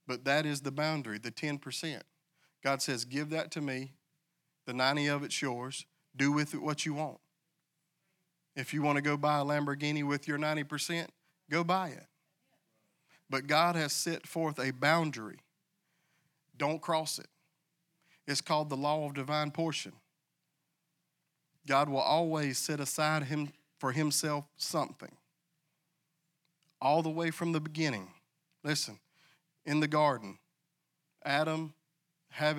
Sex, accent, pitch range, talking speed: male, American, 145-165 Hz, 140 wpm